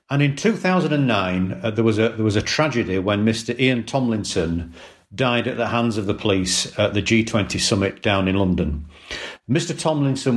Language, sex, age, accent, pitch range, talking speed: English, male, 50-69, British, 105-130 Hz, 180 wpm